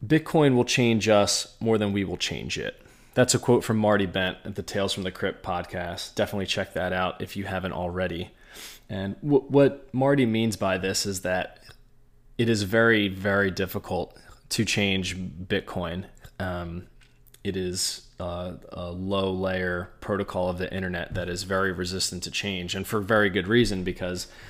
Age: 20-39